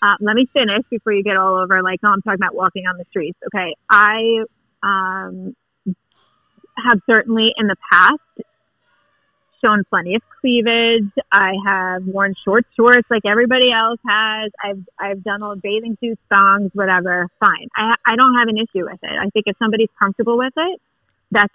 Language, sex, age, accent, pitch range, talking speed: English, female, 30-49, American, 195-225 Hz, 180 wpm